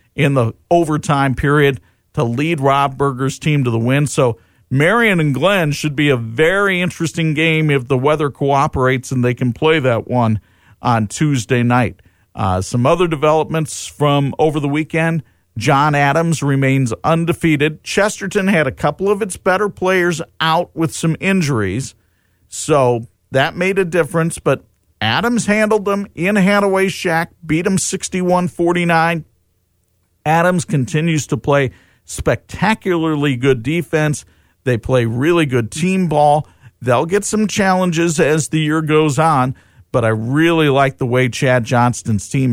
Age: 50-69